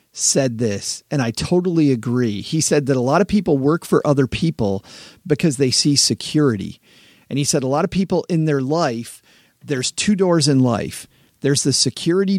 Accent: American